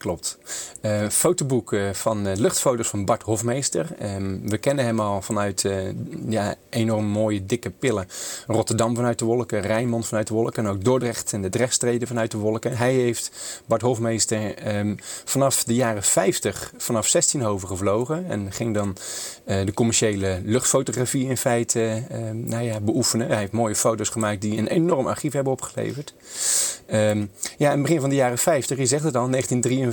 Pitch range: 110-135 Hz